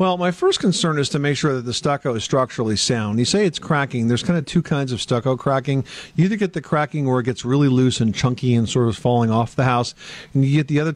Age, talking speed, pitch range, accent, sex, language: 50-69, 275 wpm, 120-150 Hz, American, male, English